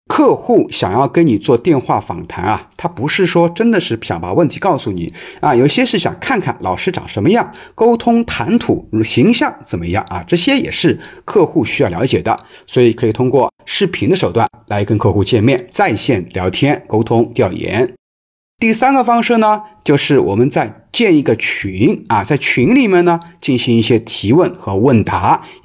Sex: male